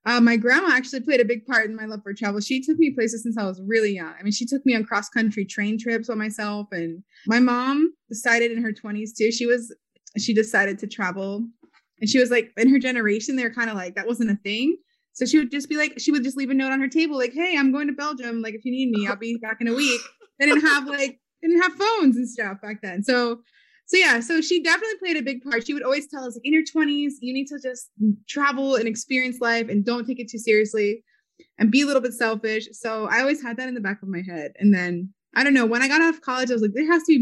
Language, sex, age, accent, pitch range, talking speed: English, female, 20-39, American, 215-275 Hz, 280 wpm